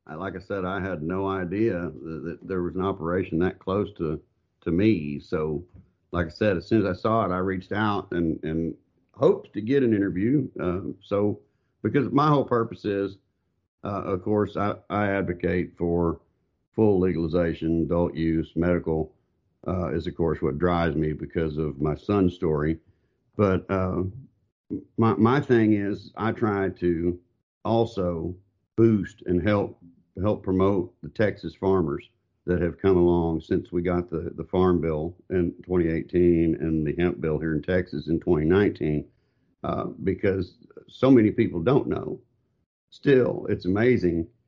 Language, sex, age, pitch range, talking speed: English, male, 50-69, 85-105 Hz, 160 wpm